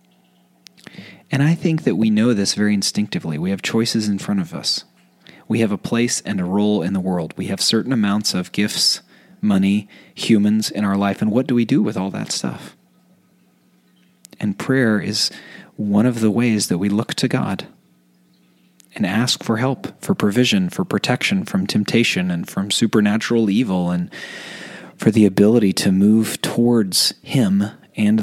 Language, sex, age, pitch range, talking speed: English, male, 30-49, 95-125 Hz, 170 wpm